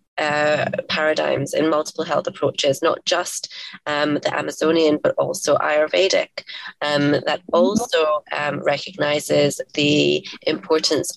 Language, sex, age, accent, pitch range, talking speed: English, female, 20-39, British, 150-175 Hz, 115 wpm